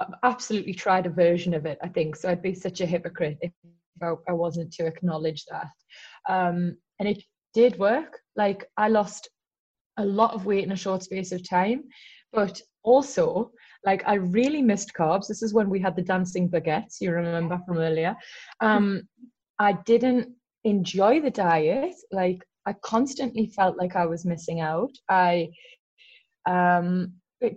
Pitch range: 175-230 Hz